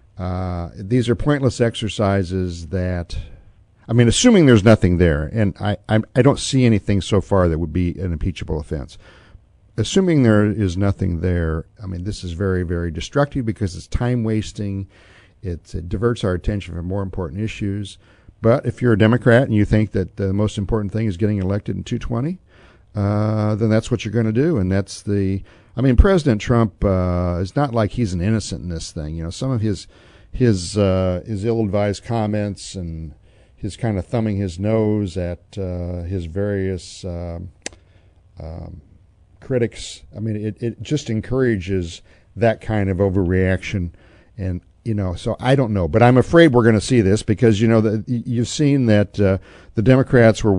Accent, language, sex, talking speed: American, English, male, 185 wpm